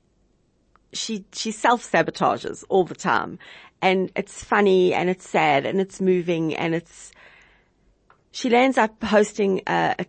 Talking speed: 135 wpm